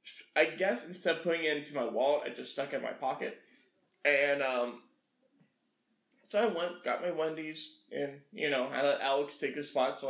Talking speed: 200 wpm